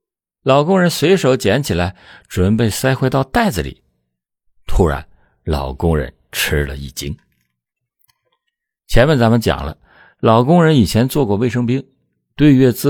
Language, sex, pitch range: Chinese, male, 75-125 Hz